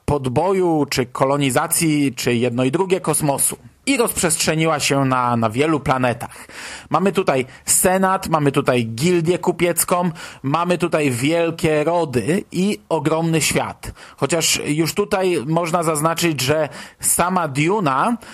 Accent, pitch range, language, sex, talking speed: native, 145-185 Hz, Polish, male, 120 wpm